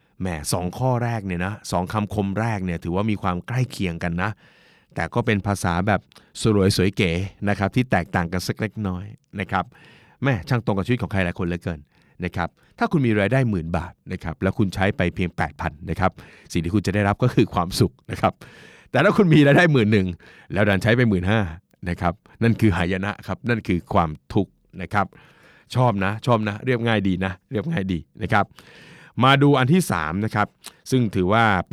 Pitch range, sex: 95-135 Hz, male